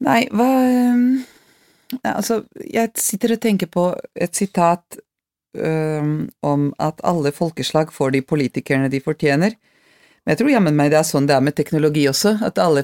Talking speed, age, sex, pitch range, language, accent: 170 wpm, 40-59, female, 155-205 Hz, English, Swedish